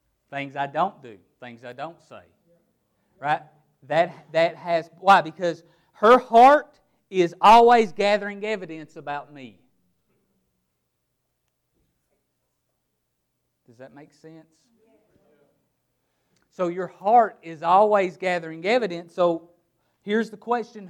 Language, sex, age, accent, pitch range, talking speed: English, male, 40-59, American, 145-200 Hz, 105 wpm